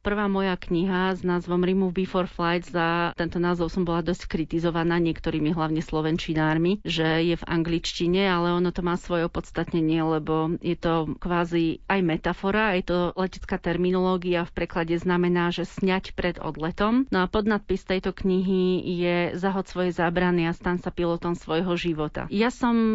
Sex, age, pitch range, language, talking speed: female, 40-59, 170-190 Hz, Slovak, 160 wpm